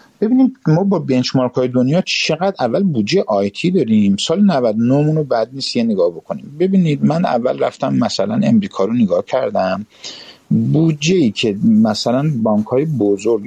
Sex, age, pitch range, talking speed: male, 50-69, 115-185 Hz, 150 wpm